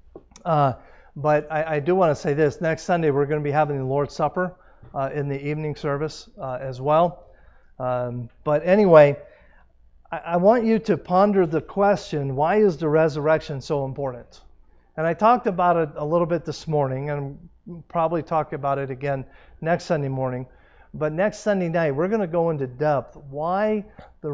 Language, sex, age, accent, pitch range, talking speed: English, male, 50-69, American, 125-165 Hz, 185 wpm